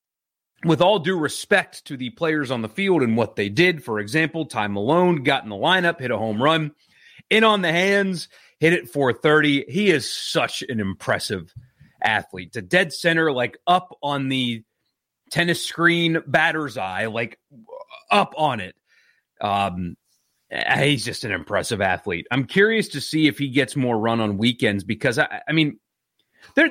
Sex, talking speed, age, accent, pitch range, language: male, 170 wpm, 30-49, American, 110-170 Hz, English